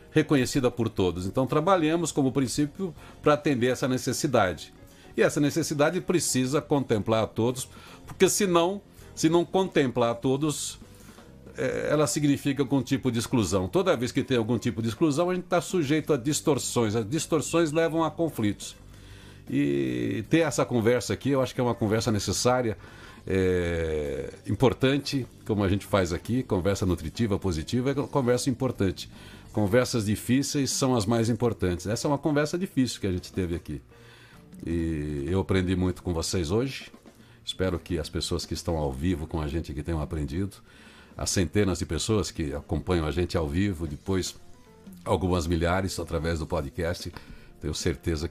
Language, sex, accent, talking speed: Portuguese, male, Brazilian, 165 wpm